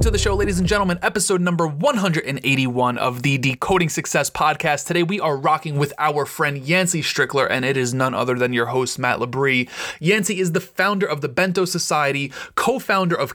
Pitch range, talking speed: 130-175 Hz, 195 wpm